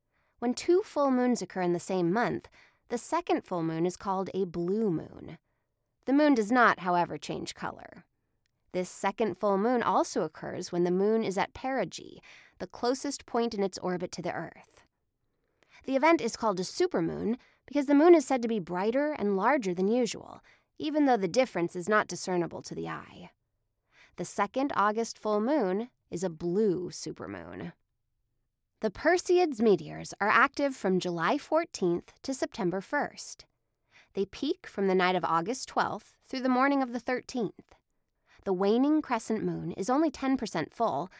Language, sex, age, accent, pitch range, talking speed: English, female, 20-39, American, 180-265 Hz, 170 wpm